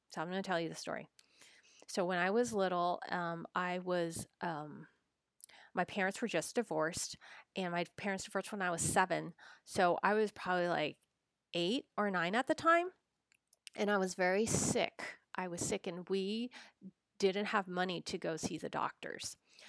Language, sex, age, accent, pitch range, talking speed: English, female, 30-49, American, 170-205 Hz, 180 wpm